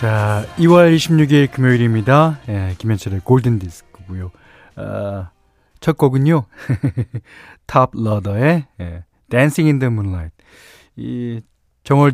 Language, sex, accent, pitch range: Korean, male, native, 100-150 Hz